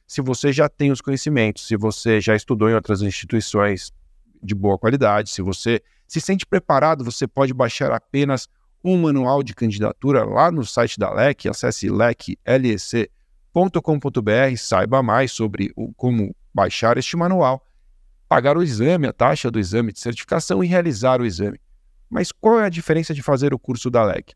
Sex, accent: male, Brazilian